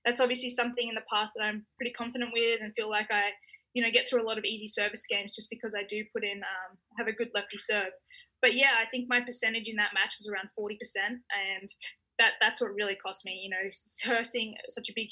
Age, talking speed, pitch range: 10-29, 250 wpm, 200-240 Hz